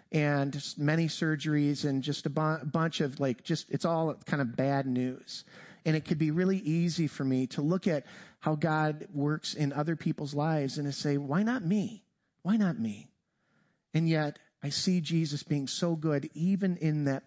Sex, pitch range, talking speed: male, 145-190 Hz, 190 wpm